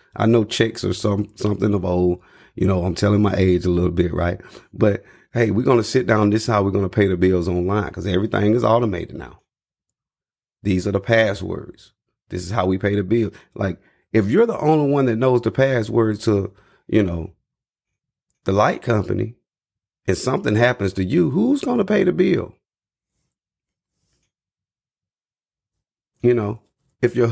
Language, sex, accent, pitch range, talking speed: English, male, American, 100-135 Hz, 180 wpm